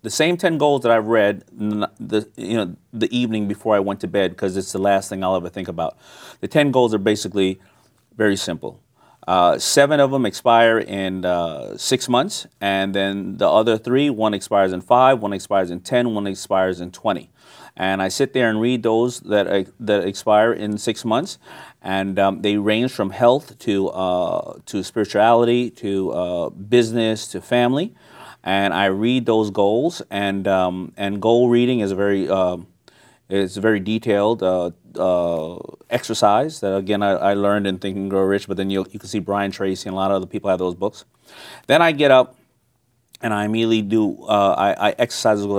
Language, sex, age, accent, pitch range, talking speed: English, male, 30-49, American, 95-115 Hz, 195 wpm